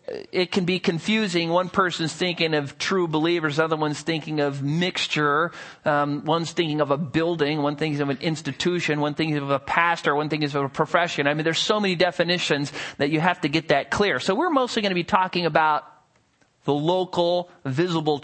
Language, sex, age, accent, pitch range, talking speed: English, male, 40-59, American, 145-185 Hz, 195 wpm